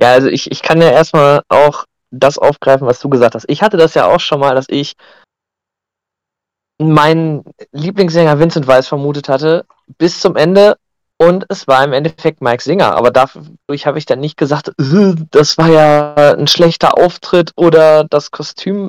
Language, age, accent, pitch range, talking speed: German, 20-39, German, 135-165 Hz, 175 wpm